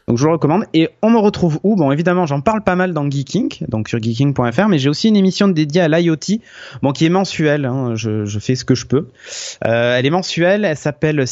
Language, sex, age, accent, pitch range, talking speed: French, male, 20-39, French, 125-165 Hz, 245 wpm